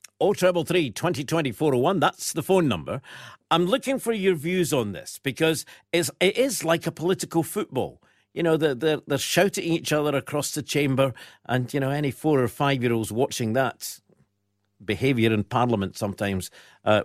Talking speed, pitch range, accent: 155 wpm, 120-175 Hz, British